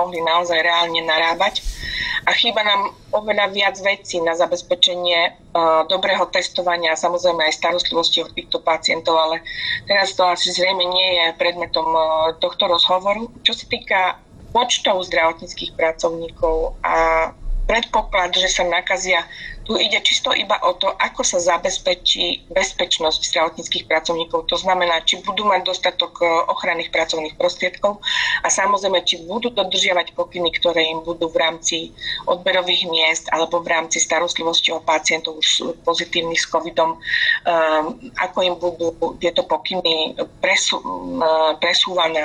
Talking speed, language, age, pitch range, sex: 130 wpm, Slovak, 30-49, 165-195 Hz, female